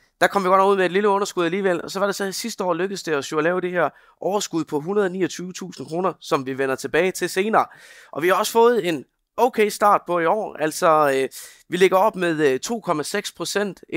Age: 20-39